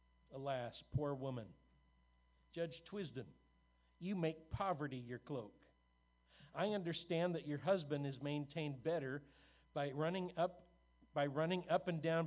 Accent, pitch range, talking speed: American, 125-170 Hz, 125 wpm